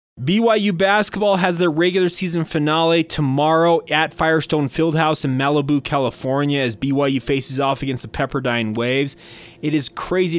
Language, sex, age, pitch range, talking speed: English, male, 30-49, 125-155 Hz, 145 wpm